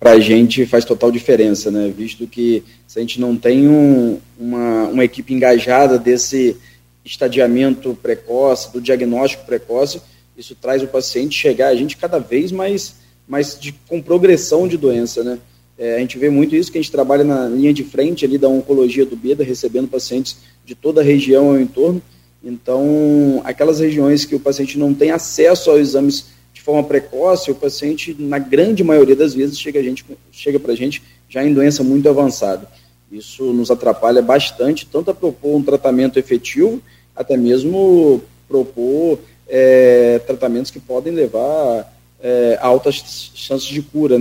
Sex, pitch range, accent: male, 120-145 Hz, Brazilian